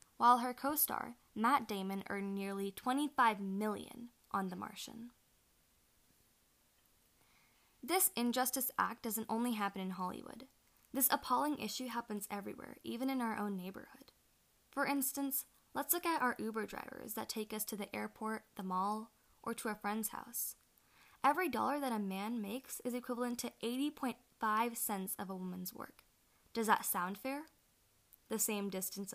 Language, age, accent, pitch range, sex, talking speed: English, 10-29, American, 200-255 Hz, female, 150 wpm